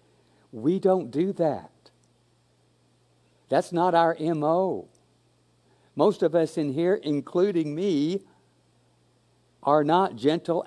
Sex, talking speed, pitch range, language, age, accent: male, 100 wpm, 100-155 Hz, English, 60-79, American